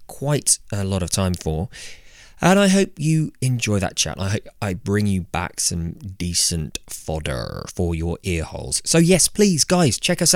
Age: 20-39